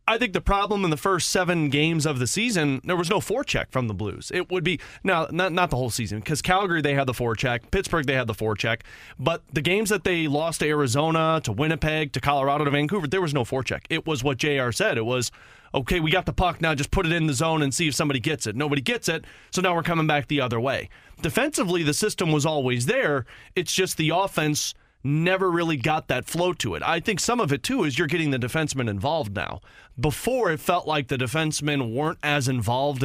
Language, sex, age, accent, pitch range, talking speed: English, male, 30-49, American, 135-165 Hz, 240 wpm